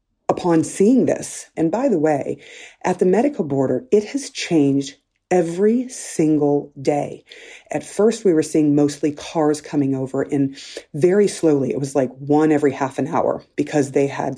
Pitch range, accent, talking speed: 140-175 Hz, American, 165 wpm